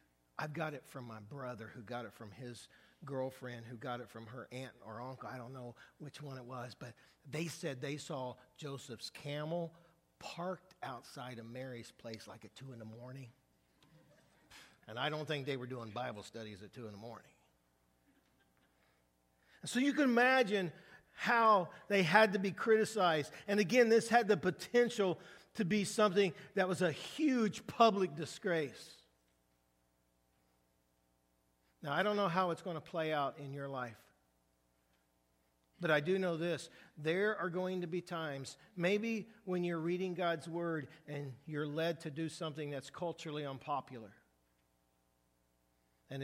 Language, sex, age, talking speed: English, male, 50-69, 160 wpm